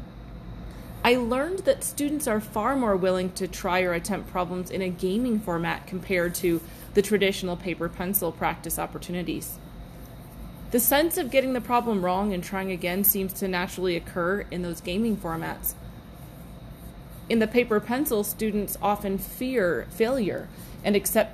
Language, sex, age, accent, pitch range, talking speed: English, female, 30-49, American, 175-220 Hz, 145 wpm